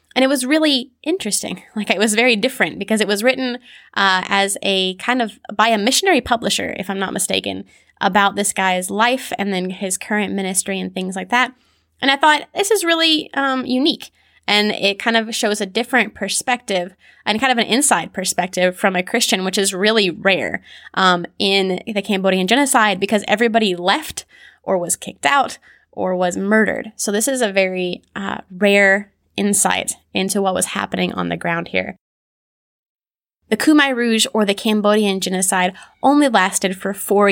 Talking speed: 180 wpm